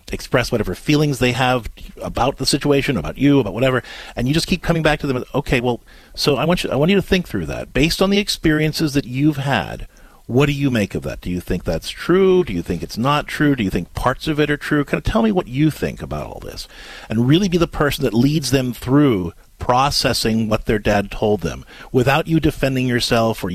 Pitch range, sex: 115-155 Hz, male